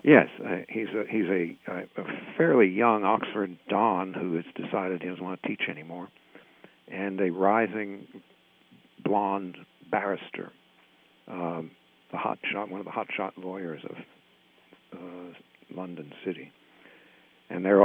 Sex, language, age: male, English, 60-79